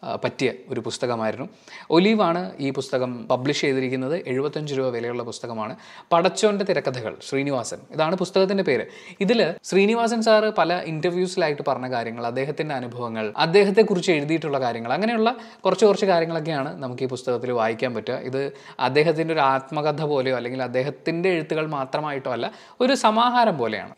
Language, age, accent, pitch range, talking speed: Malayalam, 20-39, native, 135-190 Hz, 130 wpm